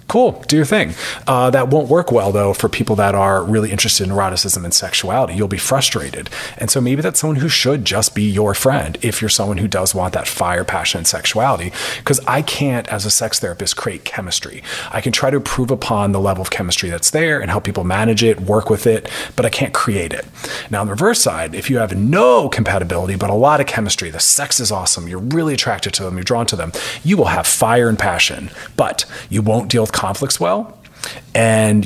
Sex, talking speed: male, 230 wpm